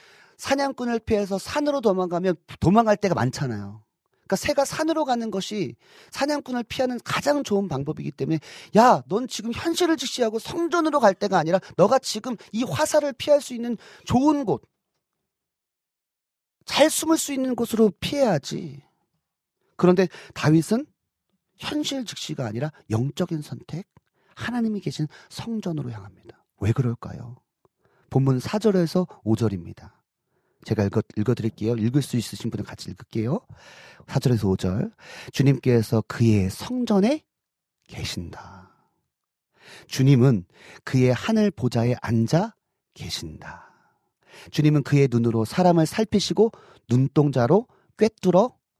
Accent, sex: native, male